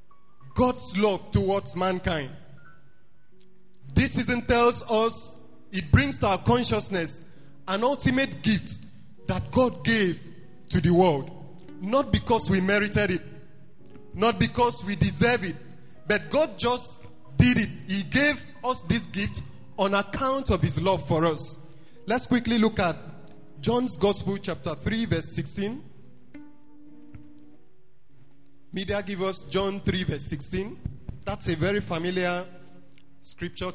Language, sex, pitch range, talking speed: English, male, 160-205 Hz, 125 wpm